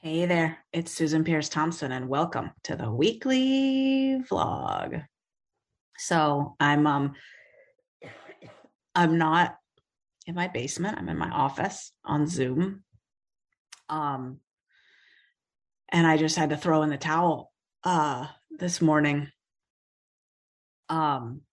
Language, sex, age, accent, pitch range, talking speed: English, female, 30-49, American, 140-160 Hz, 110 wpm